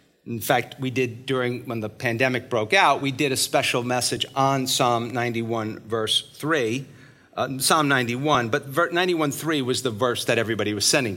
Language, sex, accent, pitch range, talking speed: English, male, American, 125-170 Hz, 175 wpm